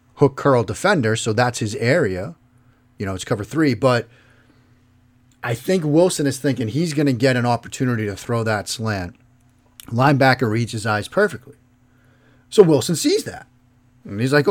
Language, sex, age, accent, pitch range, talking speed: English, male, 40-59, American, 120-140 Hz, 165 wpm